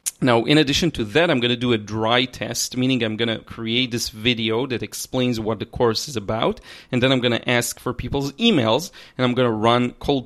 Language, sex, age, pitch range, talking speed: English, male, 30-49, 115-135 Hz, 240 wpm